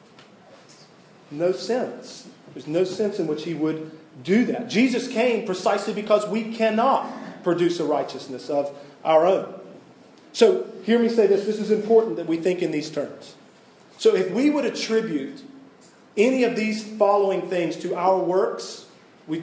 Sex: male